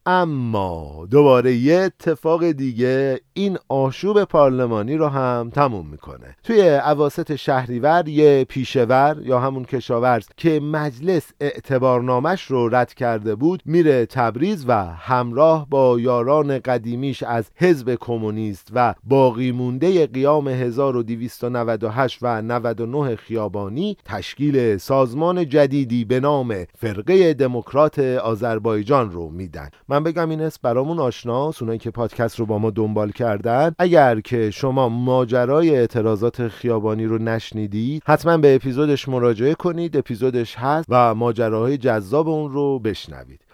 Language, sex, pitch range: Persian, male, 120-150 Hz